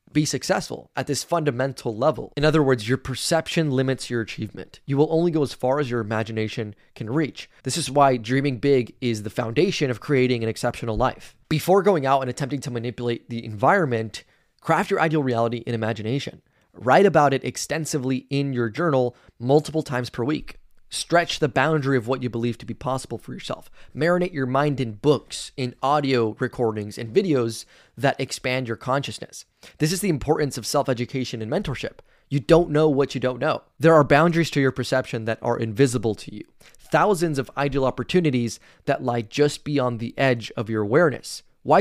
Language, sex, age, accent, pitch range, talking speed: English, male, 20-39, American, 120-150 Hz, 185 wpm